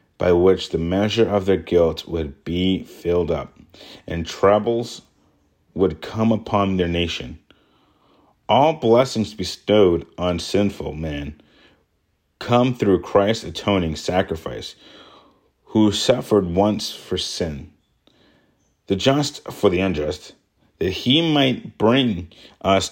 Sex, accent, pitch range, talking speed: male, American, 80-110 Hz, 115 wpm